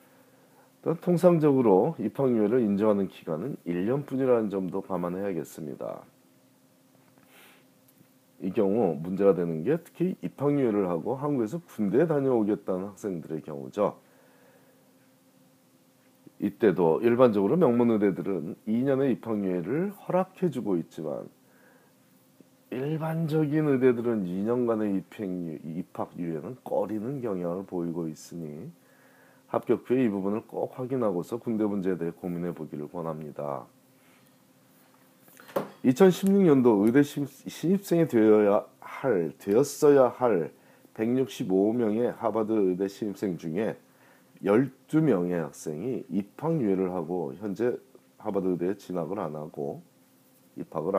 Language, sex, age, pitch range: Korean, male, 40-59, 90-130 Hz